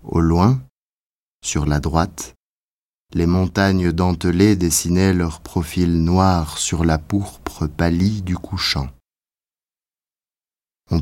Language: Spanish